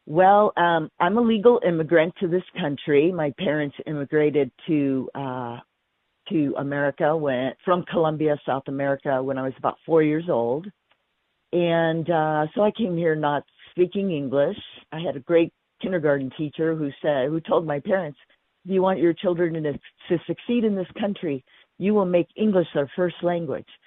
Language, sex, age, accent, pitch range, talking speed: English, female, 50-69, American, 145-180 Hz, 170 wpm